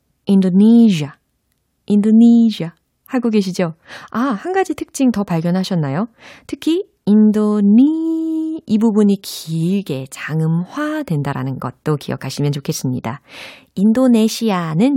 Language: Korean